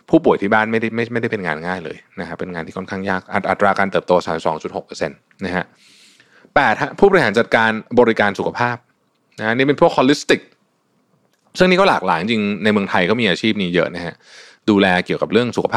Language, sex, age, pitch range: Thai, male, 20-39, 95-115 Hz